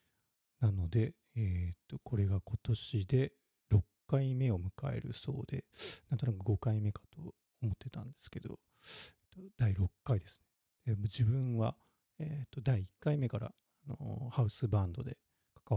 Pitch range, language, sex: 100-125 Hz, Japanese, male